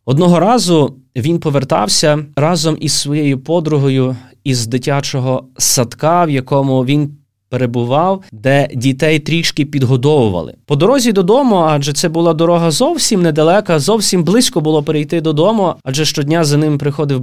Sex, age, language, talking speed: male, 20-39, Ukrainian, 130 wpm